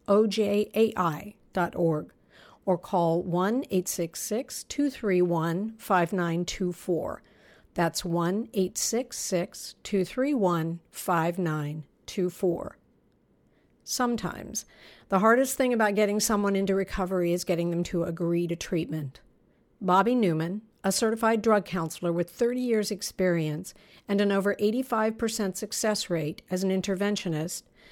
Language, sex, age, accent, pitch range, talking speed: English, female, 50-69, American, 175-210 Hz, 90 wpm